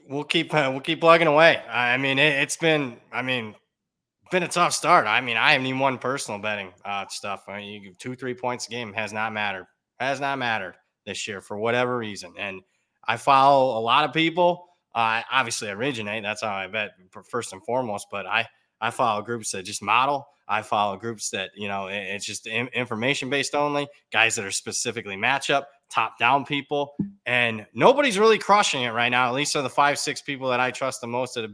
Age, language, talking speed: 20-39, English, 215 wpm